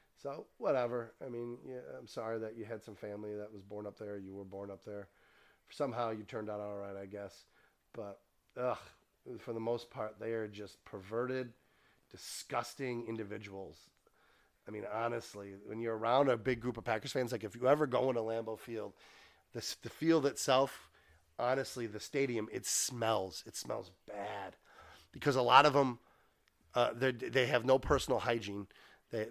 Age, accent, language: 30-49, American, English